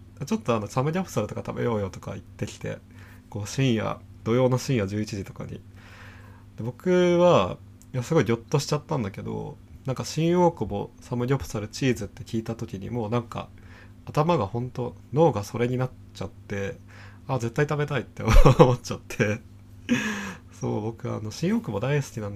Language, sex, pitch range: Japanese, male, 100-125 Hz